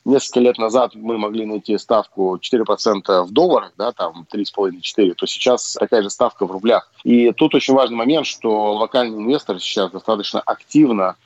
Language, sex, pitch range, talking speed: Russian, male, 105-125 Hz, 165 wpm